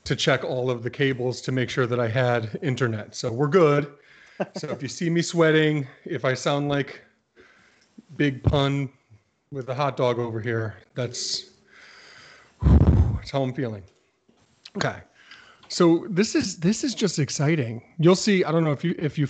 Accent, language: American, English